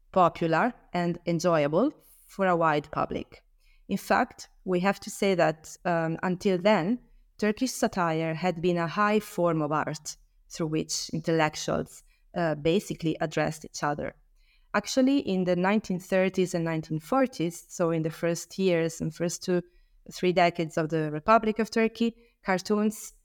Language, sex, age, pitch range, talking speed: English, female, 20-39, 160-205 Hz, 145 wpm